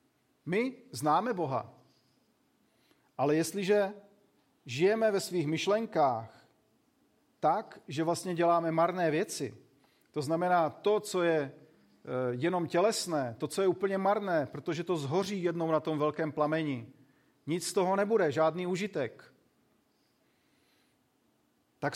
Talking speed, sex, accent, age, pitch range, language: 115 wpm, male, native, 40-59, 150-200 Hz, Czech